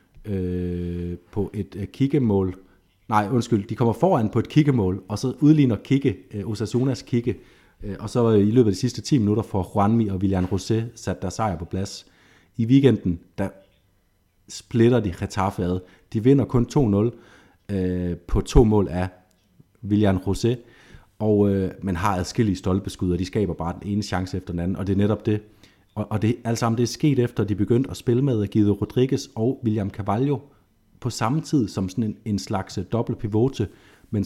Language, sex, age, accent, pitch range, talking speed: Danish, male, 30-49, native, 95-115 Hz, 190 wpm